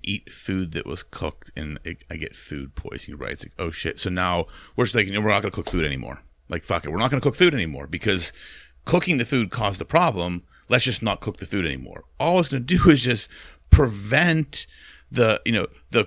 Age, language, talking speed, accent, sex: 30-49, English, 235 wpm, American, male